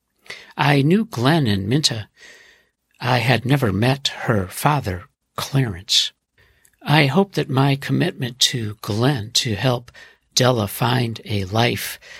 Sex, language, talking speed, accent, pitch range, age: male, English, 125 wpm, American, 105-145 Hz, 60-79